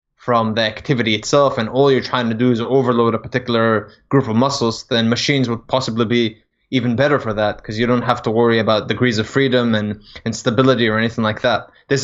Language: English